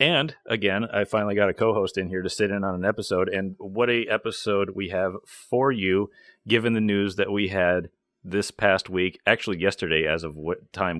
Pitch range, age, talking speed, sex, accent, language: 90-110 Hz, 30-49, 205 wpm, male, American, English